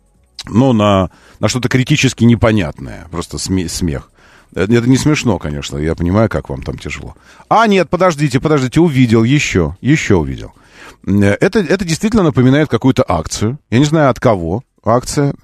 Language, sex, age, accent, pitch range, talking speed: Russian, male, 40-59, native, 100-145 Hz, 150 wpm